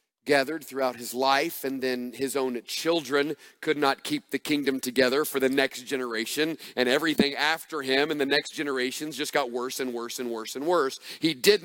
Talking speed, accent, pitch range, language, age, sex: 195 wpm, American, 140-180 Hz, English, 40-59, male